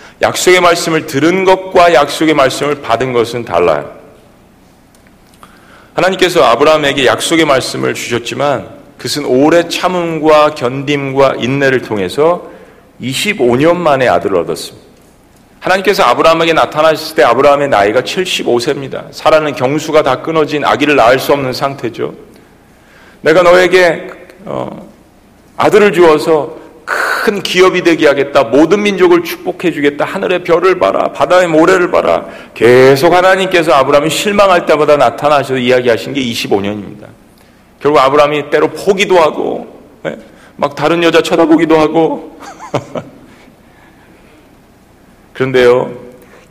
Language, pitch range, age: Korean, 135-175 Hz, 40-59